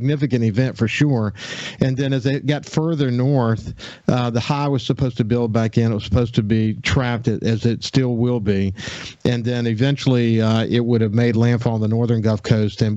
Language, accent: English, American